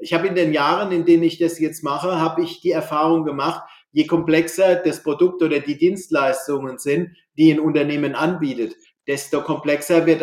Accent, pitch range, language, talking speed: German, 150-175 Hz, German, 180 wpm